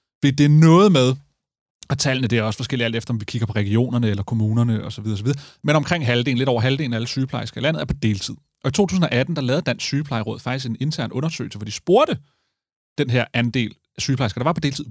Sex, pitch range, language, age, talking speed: male, 120-155 Hz, Danish, 30-49, 235 wpm